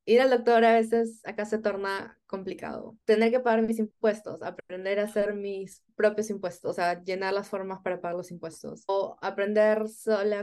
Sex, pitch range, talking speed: female, 180-215 Hz, 185 wpm